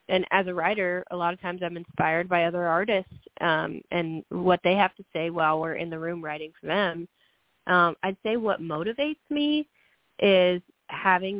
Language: English